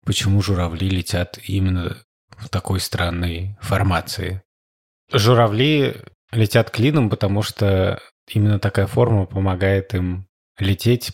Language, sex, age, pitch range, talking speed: Russian, male, 20-39, 90-110 Hz, 100 wpm